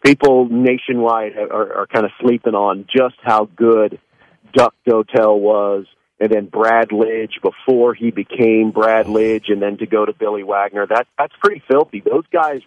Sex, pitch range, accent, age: male, 110-130 Hz, American, 40-59